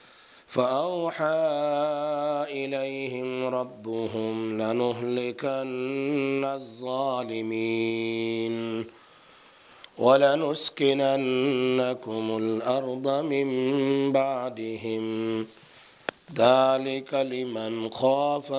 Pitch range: 125-145 Hz